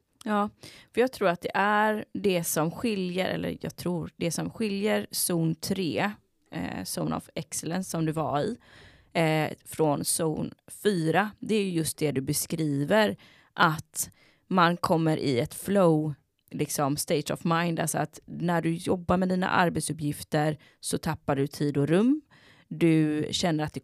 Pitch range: 150-190 Hz